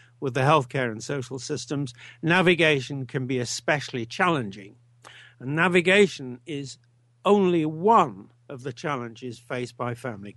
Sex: male